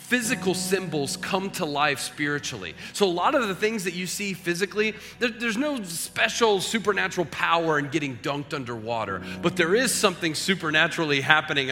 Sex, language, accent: male, English, American